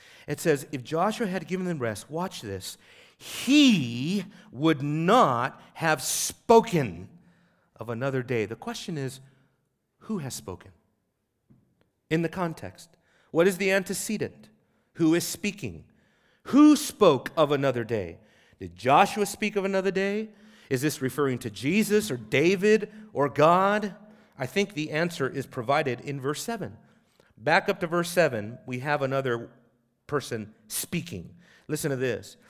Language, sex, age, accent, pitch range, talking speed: English, male, 40-59, American, 135-190 Hz, 140 wpm